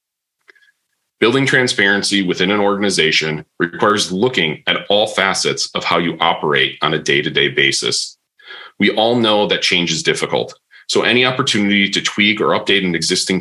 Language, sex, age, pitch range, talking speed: English, male, 30-49, 85-110 Hz, 150 wpm